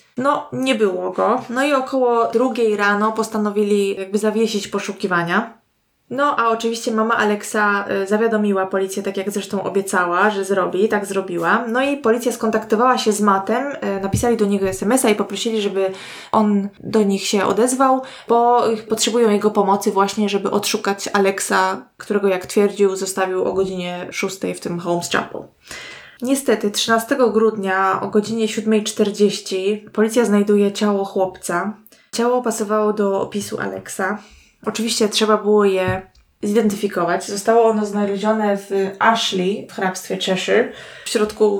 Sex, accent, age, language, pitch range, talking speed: female, native, 20-39, Polish, 195-225 Hz, 140 wpm